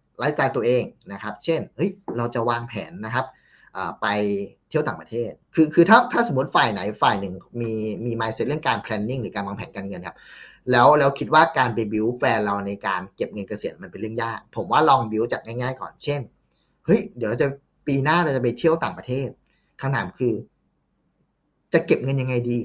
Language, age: Thai, 20-39